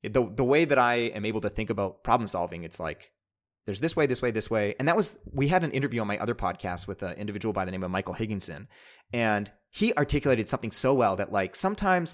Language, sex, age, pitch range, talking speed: English, male, 30-49, 110-140 Hz, 245 wpm